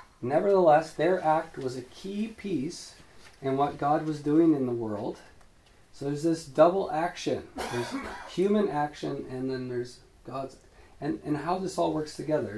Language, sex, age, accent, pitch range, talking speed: English, male, 40-59, American, 130-180 Hz, 160 wpm